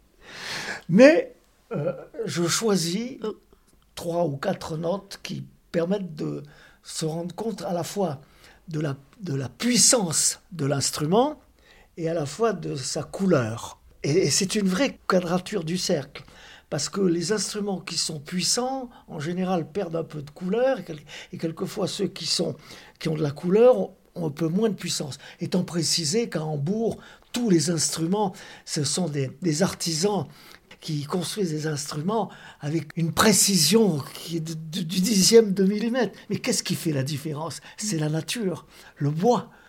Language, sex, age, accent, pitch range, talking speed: French, male, 50-69, French, 160-205 Hz, 165 wpm